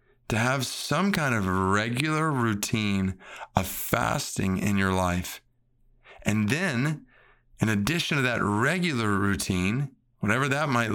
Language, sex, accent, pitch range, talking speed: English, male, American, 100-135 Hz, 125 wpm